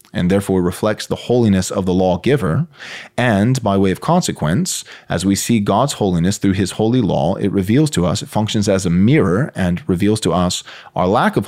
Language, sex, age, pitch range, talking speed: English, male, 30-49, 95-130 Hz, 200 wpm